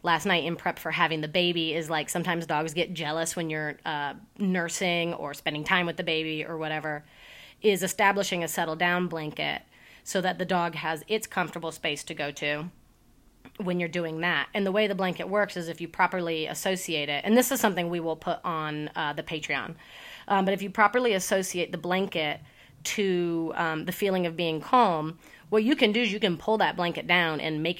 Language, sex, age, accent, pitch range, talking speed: English, female, 30-49, American, 160-195 Hz, 210 wpm